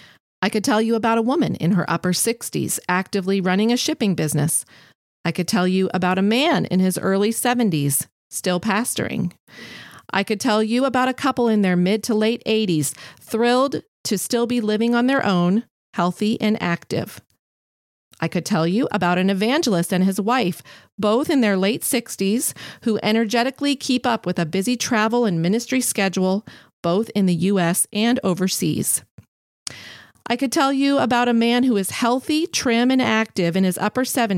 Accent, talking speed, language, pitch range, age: American, 175 wpm, English, 185-245 Hz, 40-59